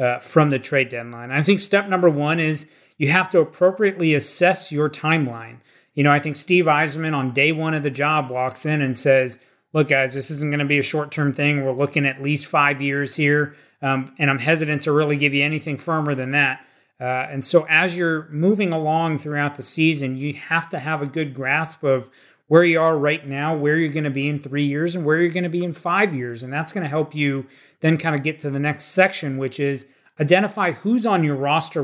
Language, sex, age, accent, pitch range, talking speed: English, male, 30-49, American, 135-160 Hz, 235 wpm